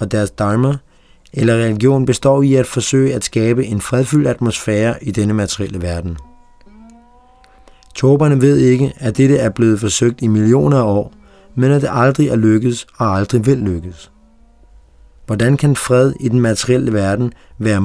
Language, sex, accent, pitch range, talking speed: Danish, male, native, 105-130 Hz, 160 wpm